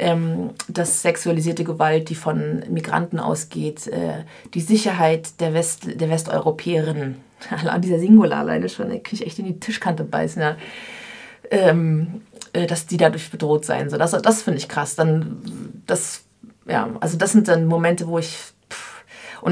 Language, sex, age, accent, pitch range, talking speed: German, female, 30-49, German, 170-215 Hz, 160 wpm